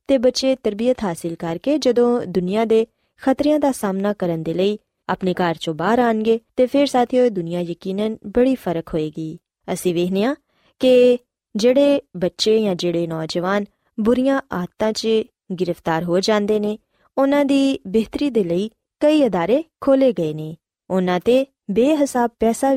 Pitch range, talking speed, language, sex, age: 180-245 Hz, 140 wpm, Punjabi, female, 20-39